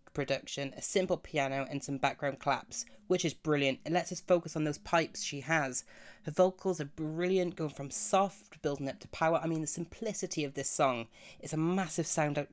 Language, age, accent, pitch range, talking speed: English, 30-49, British, 145-175 Hz, 205 wpm